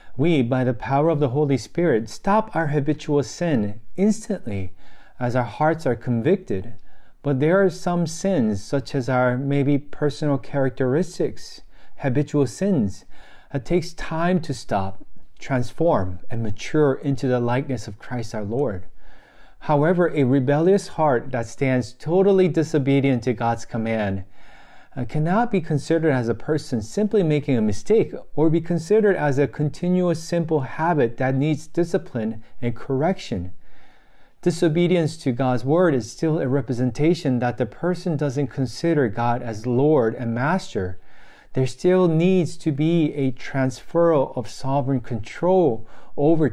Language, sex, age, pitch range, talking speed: English, male, 40-59, 120-160 Hz, 140 wpm